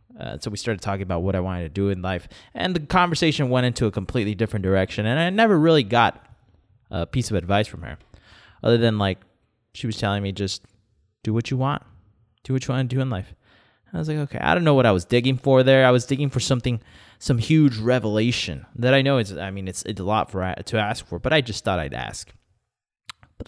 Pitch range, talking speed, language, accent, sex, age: 105-150 Hz, 245 wpm, English, American, male, 20-39